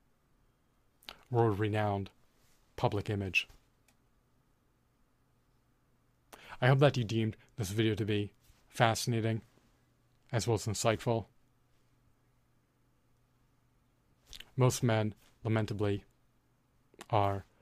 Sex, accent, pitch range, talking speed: male, American, 105-125 Hz, 70 wpm